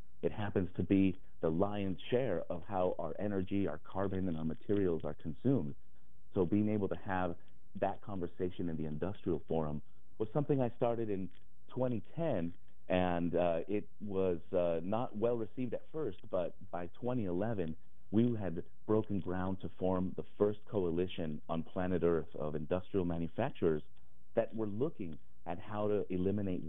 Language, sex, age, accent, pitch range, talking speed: English, male, 40-59, American, 85-105 Hz, 155 wpm